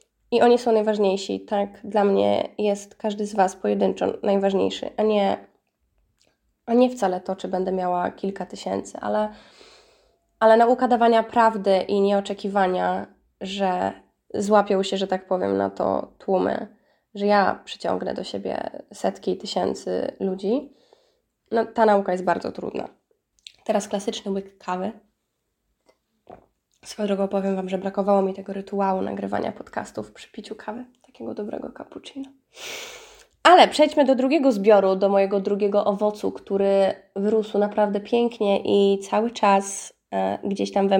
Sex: female